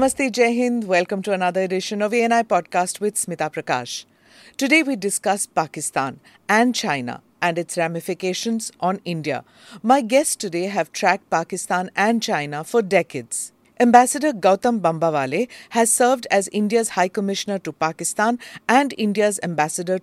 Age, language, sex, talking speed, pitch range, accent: 50-69, English, female, 145 wpm, 180-235 Hz, Indian